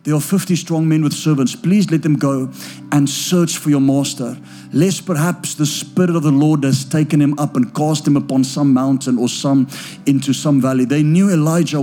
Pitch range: 135-165 Hz